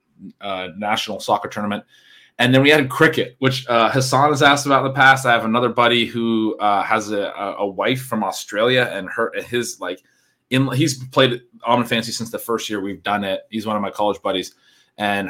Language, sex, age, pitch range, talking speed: English, male, 30-49, 105-135 Hz, 210 wpm